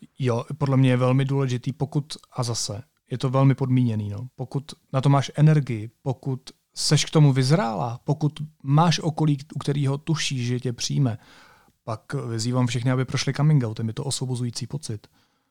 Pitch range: 125-150 Hz